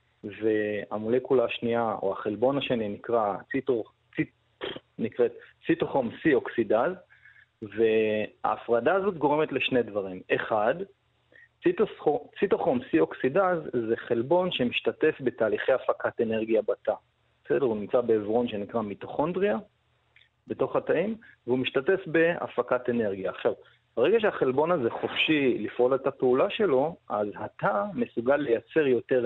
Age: 30-49